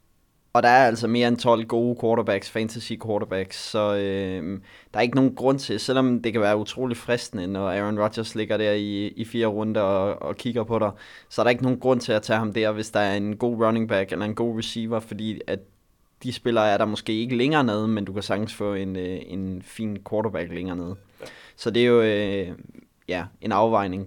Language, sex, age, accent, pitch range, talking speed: Danish, male, 20-39, native, 100-120 Hz, 225 wpm